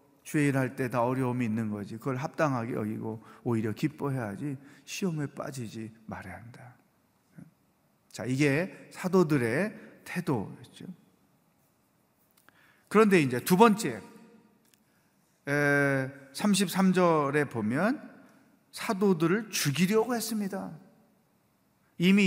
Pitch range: 130-185 Hz